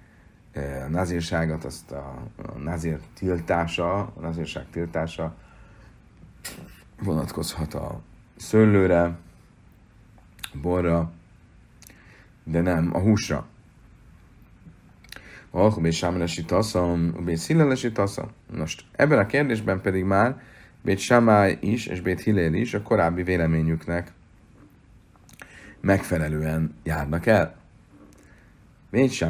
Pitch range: 80-95 Hz